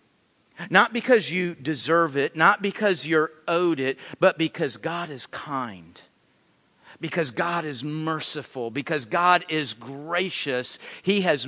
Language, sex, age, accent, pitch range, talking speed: English, male, 50-69, American, 155-220 Hz, 130 wpm